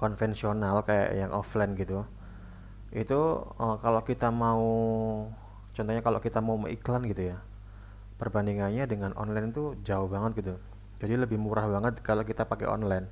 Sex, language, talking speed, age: male, Indonesian, 140 wpm, 20-39